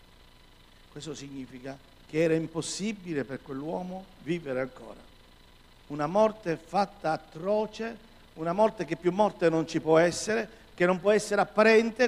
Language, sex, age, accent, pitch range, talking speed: Italian, male, 50-69, native, 125-175 Hz, 135 wpm